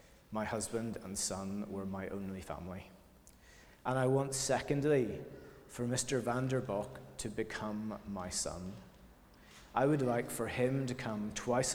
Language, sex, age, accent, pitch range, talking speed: English, male, 30-49, British, 100-125 Hz, 140 wpm